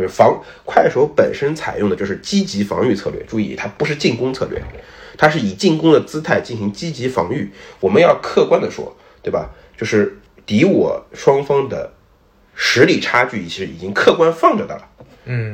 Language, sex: Chinese, male